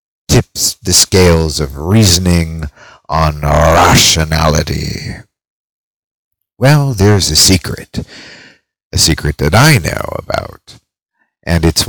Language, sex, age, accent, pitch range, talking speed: English, male, 50-69, American, 80-105 Hz, 95 wpm